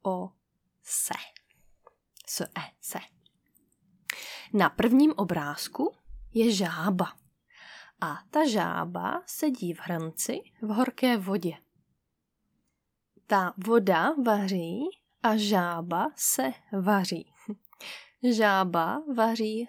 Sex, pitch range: female, 185-240 Hz